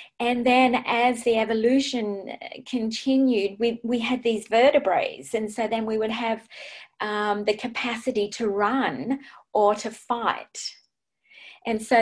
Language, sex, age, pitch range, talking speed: English, female, 30-49, 210-255 Hz, 135 wpm